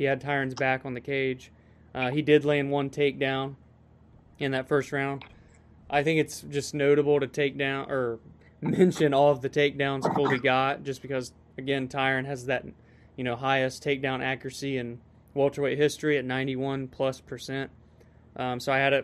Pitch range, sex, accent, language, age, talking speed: 130-155 Hz, male, American, English, 20-39, 175 wpm